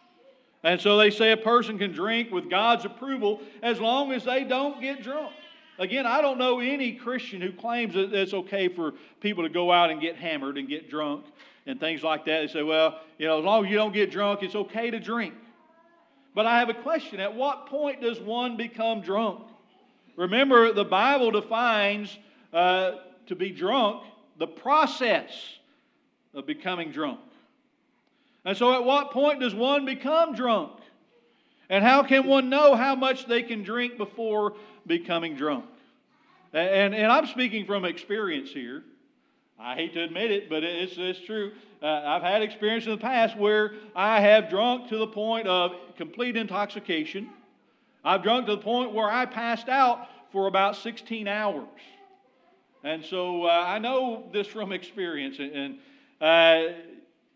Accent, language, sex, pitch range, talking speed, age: American, English, male, 190-260 Hz, 175 wpm, 40-59